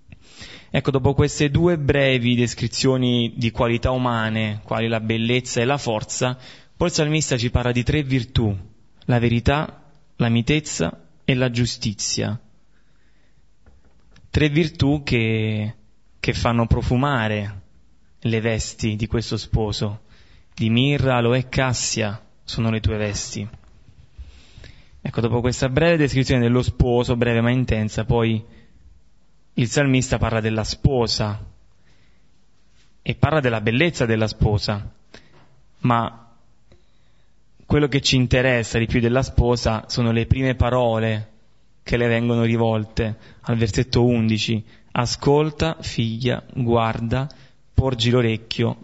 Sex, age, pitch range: male, 20-39, 110-130 Hz